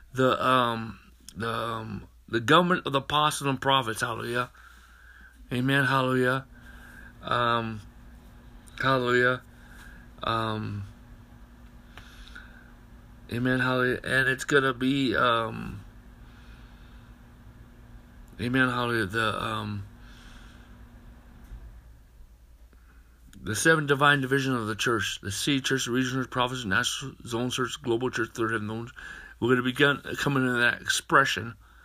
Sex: male